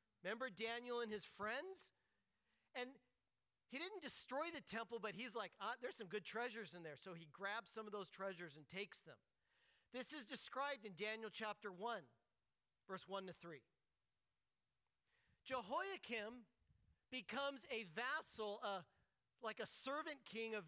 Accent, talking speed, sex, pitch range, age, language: American, 150 wpm, male, 210-275 Hz, 40-59, English